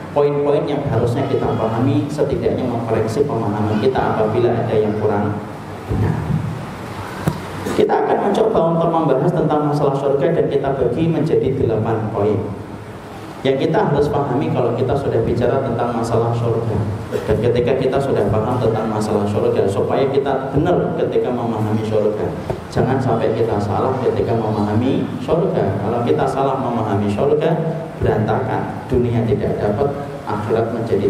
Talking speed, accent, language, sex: 135 wpm, native, Indonesian, male